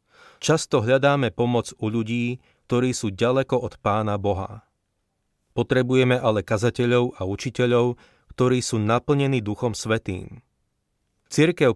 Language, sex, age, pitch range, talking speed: Slovak, male, 30-49, 100-120 Hz, 110 wpm